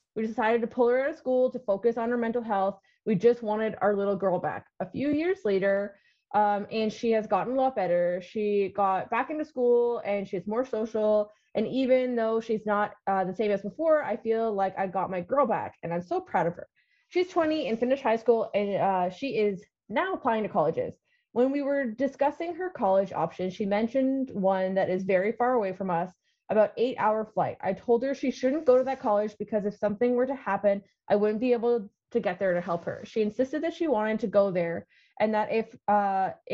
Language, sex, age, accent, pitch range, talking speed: English, female, 20-39, American, 200-250 Hz, 225 wpm